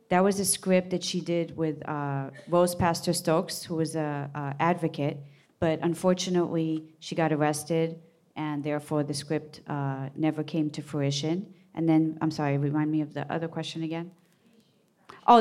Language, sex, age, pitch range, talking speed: English, female, 40-59, 160-185 Hz, 170 wpm